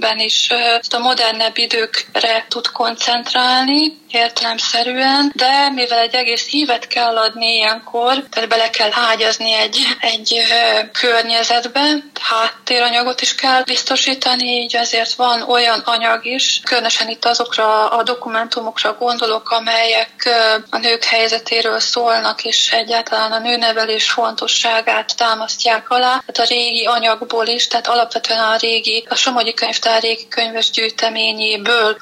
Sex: female